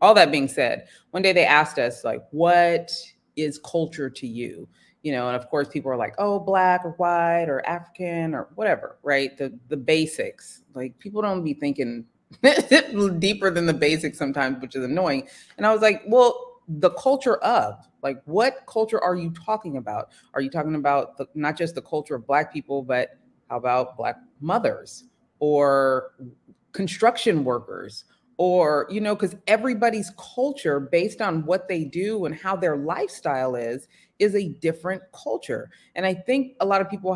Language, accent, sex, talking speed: English, American, female, 180 wpm